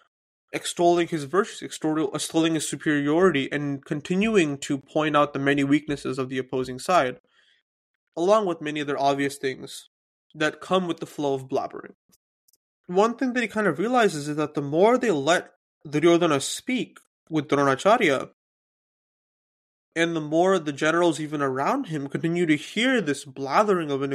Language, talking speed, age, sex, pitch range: English, 155 wpm, 20-39, male, 140-185 Hz